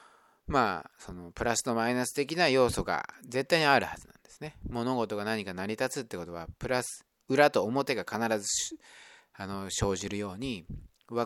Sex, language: male, Japanese